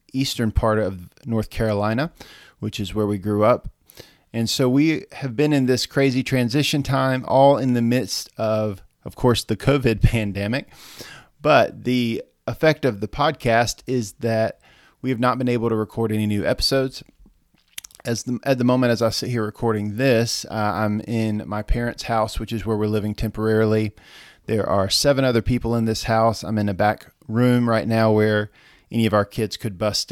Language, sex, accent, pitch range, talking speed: English, male, American, 105-125 Hz, 185 wpm